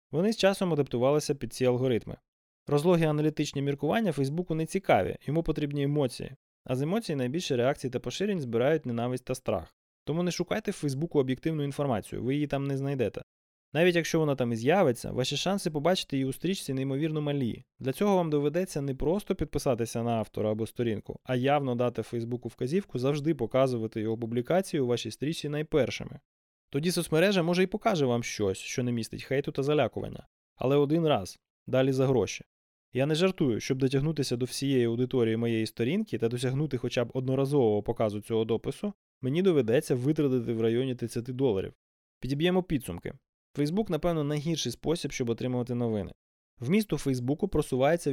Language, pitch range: Ukrainian, 120-155 Hz